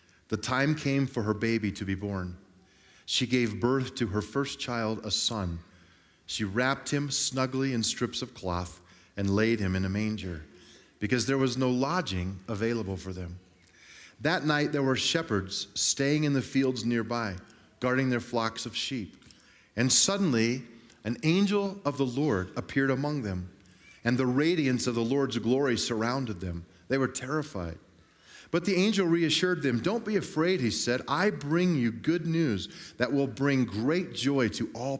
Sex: male